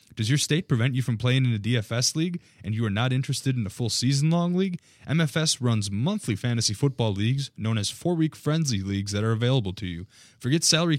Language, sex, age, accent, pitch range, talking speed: English, male, 20-39, American, 115-145 Hz, 225 wpm